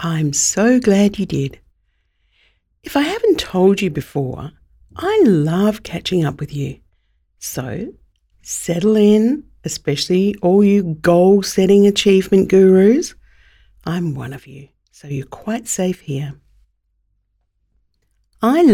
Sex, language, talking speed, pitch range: female, English, 120 wpm, 145-190 Hz